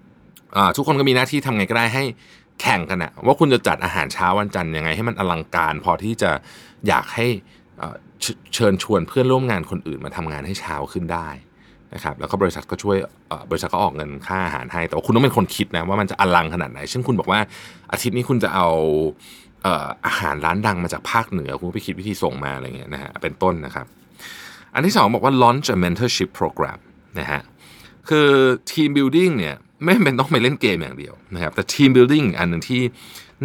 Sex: male